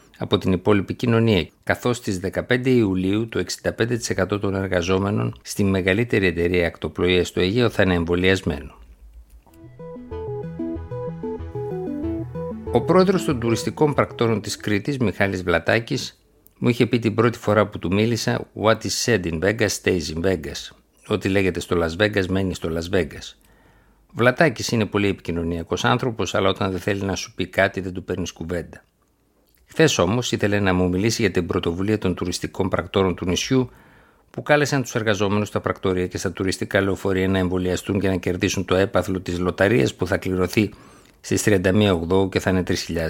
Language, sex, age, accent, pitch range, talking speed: Greek, male, 50-69, native, 90-115 Hz, 160 wpm